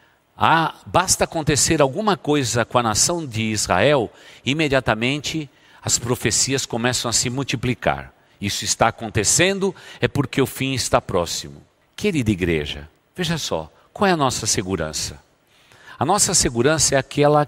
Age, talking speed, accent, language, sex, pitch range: 50-69, 135 wpm, Brazilian, Portuguese, male, 110-160 Hz